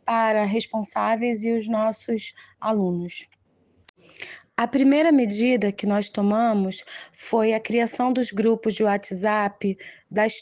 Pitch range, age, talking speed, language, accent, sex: 215-235 Hz, 20-39, 115 wpm, Portuguese, Brazilian, female